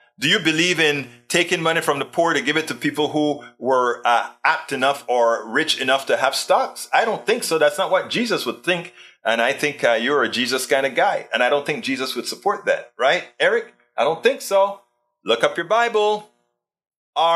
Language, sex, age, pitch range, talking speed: English, male, 30-49, 135-180 Hz, 220 wpm